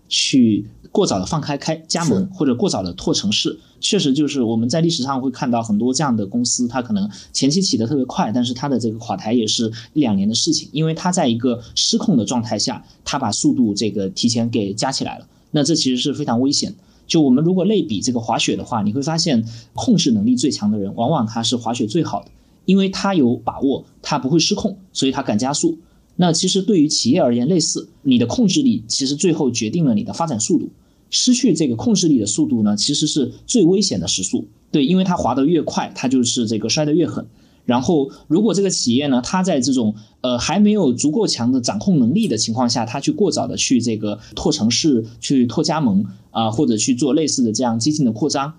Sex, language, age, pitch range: male, Chinese, 20-39, 115-185 Hz